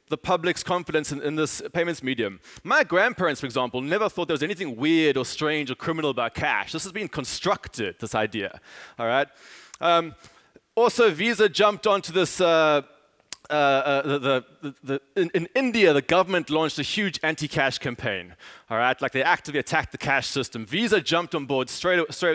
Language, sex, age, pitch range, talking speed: English, male, 20-39, 135-170 Hz, 185 wpm